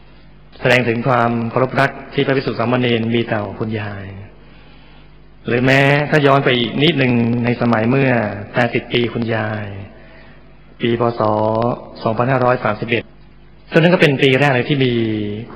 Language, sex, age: Thai, male, 20-39